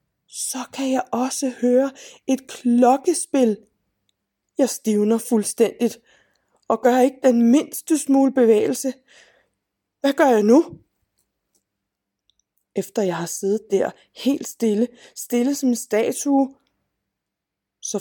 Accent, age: native, 20-39